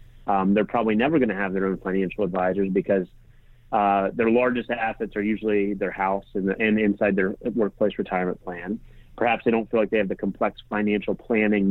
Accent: American